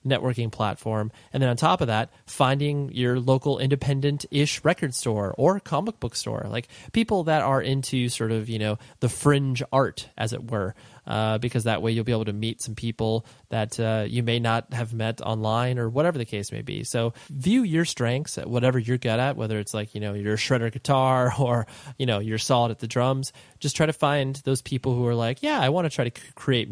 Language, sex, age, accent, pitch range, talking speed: English, male, 30-49, American, 115-135 Hz, 220 wpm